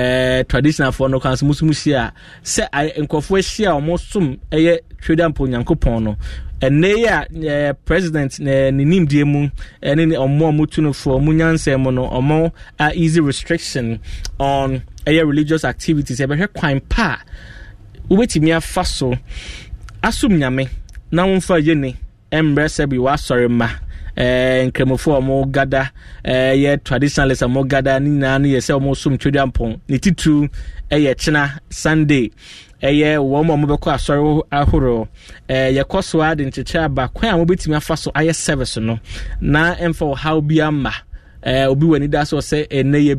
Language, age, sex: English, 20-39, male